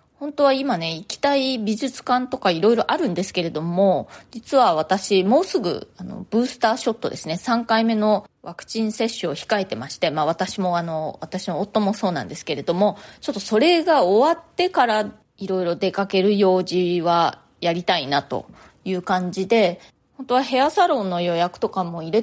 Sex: female